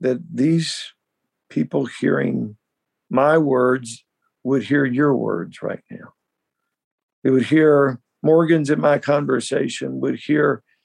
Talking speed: 115 wpm